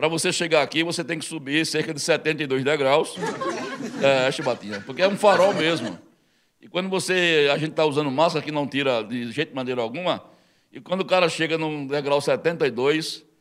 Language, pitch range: Portuguese, 145-205 Hz